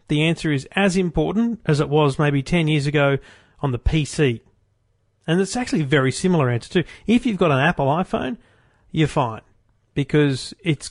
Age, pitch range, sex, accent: 40-59, 130-170 Hz, male, Australian